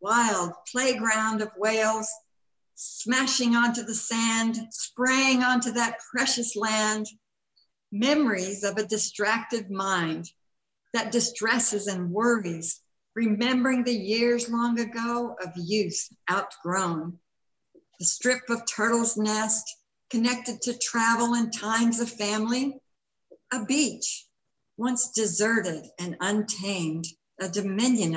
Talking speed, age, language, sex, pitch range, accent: 105 wpm, 60-79, English, female, 195-240 Hz, American